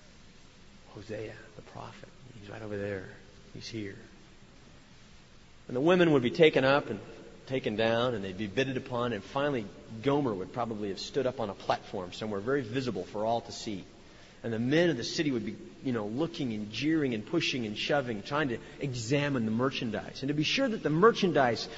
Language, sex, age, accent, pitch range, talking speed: English, male, 40-59, American, 125-195 Hz, 195 wpm